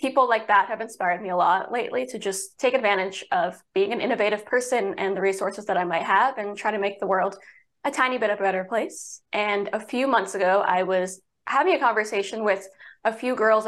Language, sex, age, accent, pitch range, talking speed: English, female, 20-39, American, 195-240 Hz, 230 wpm